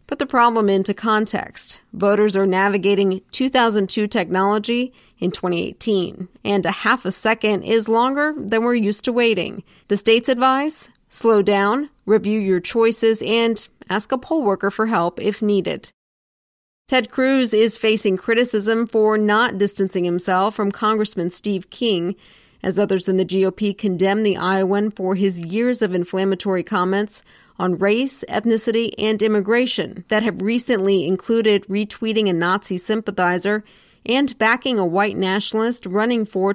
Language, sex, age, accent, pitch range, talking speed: English, female, 40-59, American, 190-225 Hz, 145 wpm